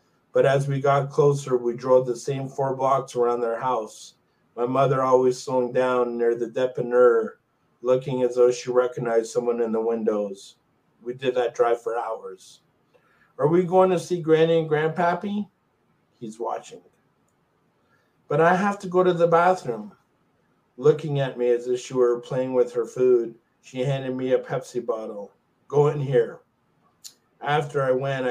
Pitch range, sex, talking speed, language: 120-155 Hz, male, 165 wpm, English